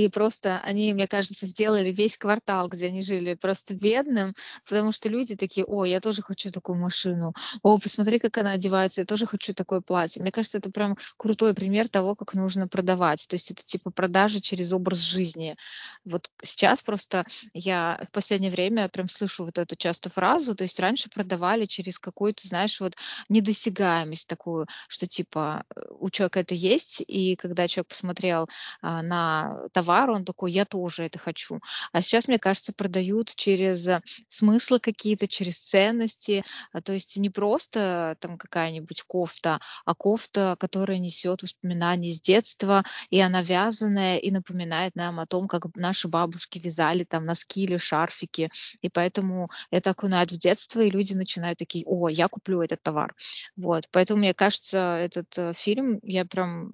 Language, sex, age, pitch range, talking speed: Russian, female, 20-39, 175-205 Hz, 165 wpm